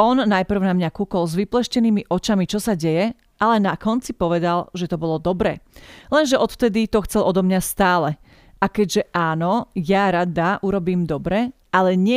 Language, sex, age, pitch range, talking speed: Slovak, female, 40-59, 180-220 Hz, 175 wpm